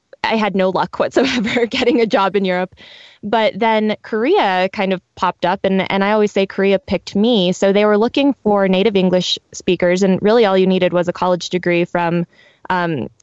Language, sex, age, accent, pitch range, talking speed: English, female, 20-39, American, 180-210 Hz, 200 wpm